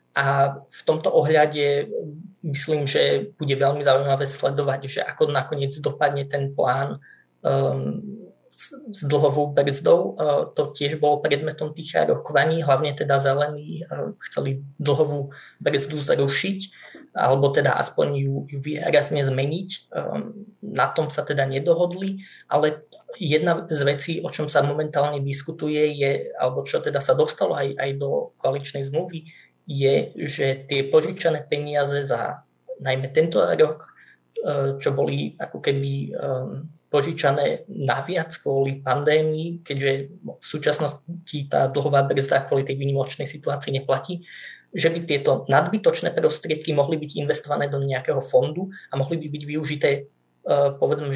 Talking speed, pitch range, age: 135 wpm, 140-165 Hz, 20-39